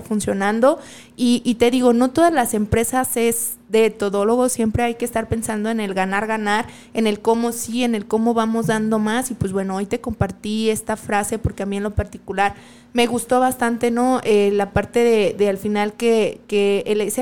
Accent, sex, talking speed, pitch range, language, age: Mexican, female, 200 wpm, 210-240 Hz, Spanish, 20-39